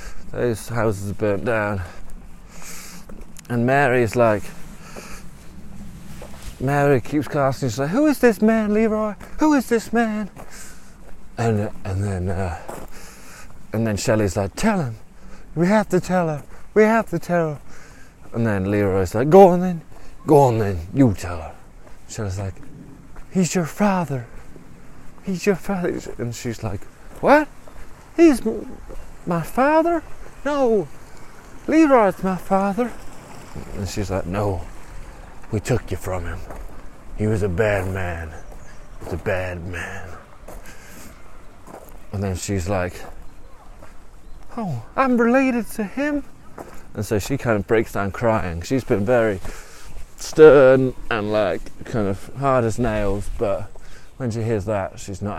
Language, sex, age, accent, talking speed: English, male, 30-49, British, 140 wpm